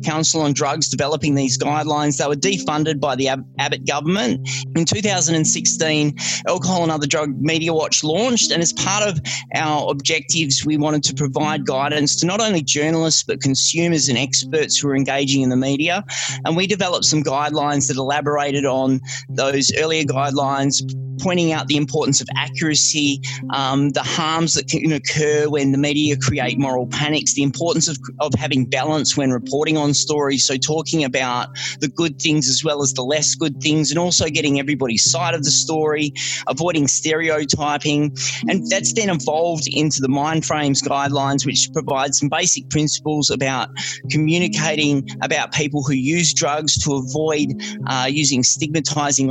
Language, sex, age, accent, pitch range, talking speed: English, male, 20-39, Australian, 135-155 Hz, 165 wpm